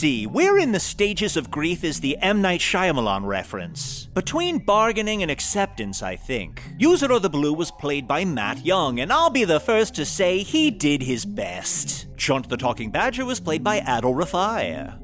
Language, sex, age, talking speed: English, male, 30-49, 185 wpm